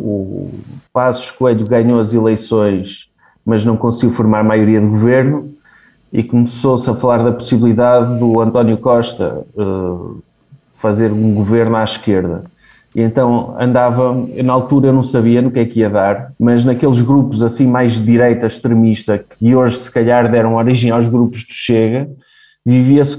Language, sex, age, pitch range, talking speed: Portuguese, male, 20-39, 115-140 Hz, 160 wpm